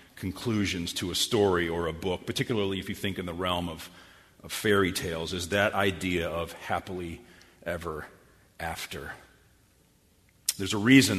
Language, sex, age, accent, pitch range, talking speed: English, male, 40-59, American, 95-120 Hz, 150 wpm